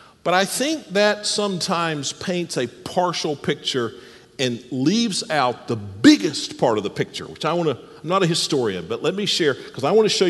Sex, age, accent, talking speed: male, 50-69, American, 205 wpm